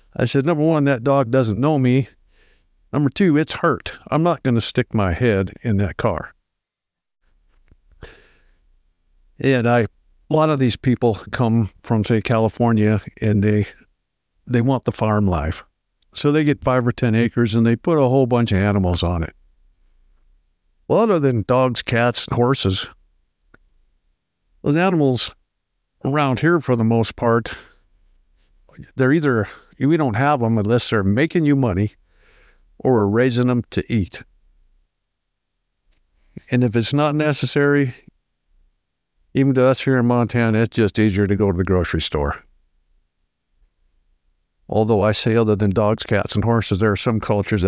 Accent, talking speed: American, 155 wpm